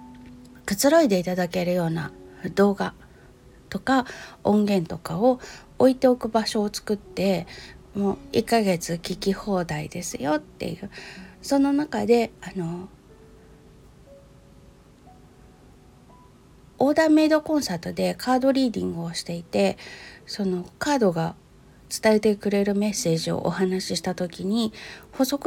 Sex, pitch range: female, 180-240 Hz